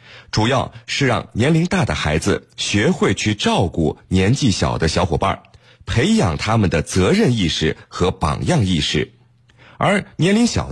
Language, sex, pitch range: Chinese, male, 90-135 Hz